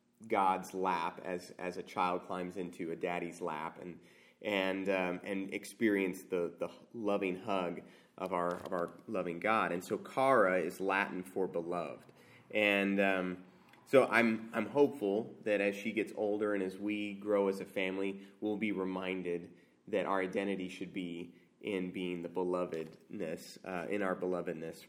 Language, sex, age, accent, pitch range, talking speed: English, male, 30-49, American, 90-105 Hz, 160 wpm